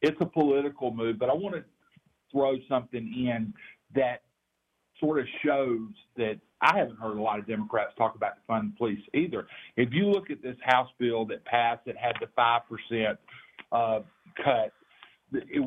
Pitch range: 115-155 Hz